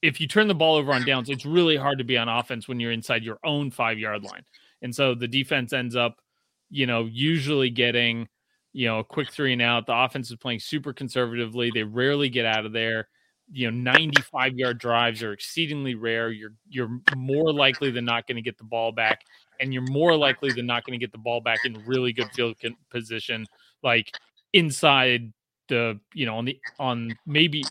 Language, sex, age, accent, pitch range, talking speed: English, male, 30-49, American, 120-140 Hz, 215 wpm